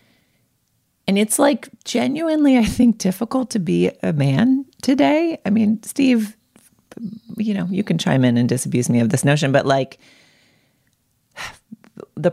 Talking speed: 145 wpm